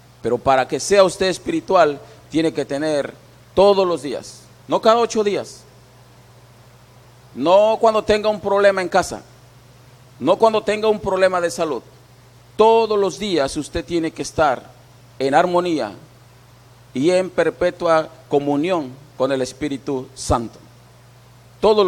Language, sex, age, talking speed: Spanish, male, 40-59, 130 wpm